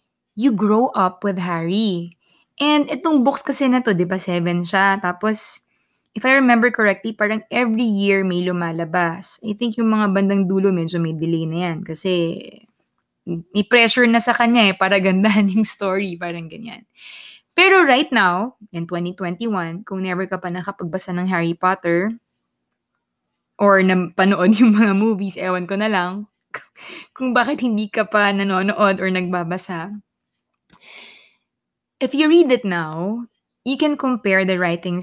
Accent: native